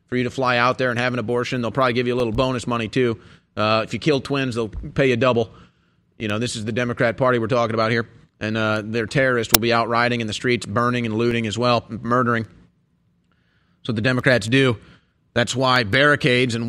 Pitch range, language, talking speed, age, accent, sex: 115-140 Hz, English, 230 wpm, 30-49, American, male